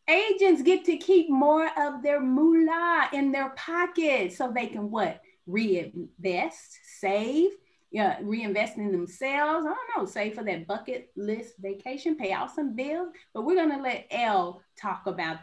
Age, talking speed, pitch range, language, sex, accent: 30-49, 160 wpm, 205-300 Hz, English, female, American